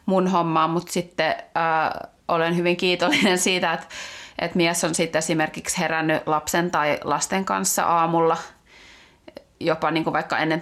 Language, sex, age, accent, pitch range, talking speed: Finnish, female, 30-49, native, 165-185 Hz, 140 wpm